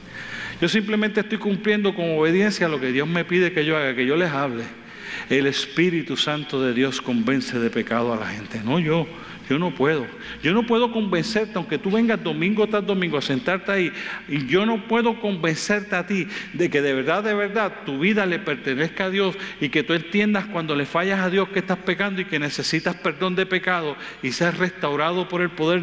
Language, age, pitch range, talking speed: Spanish, 40-59, 150-205 Hz, 210 wpm